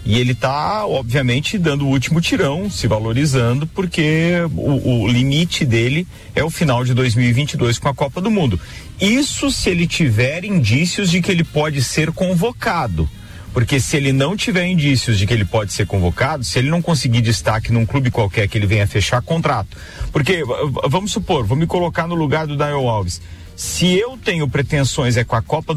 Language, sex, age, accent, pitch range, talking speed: Portuguese, male, 40-59, Brazilian, 120-170 Hz, 185 wpm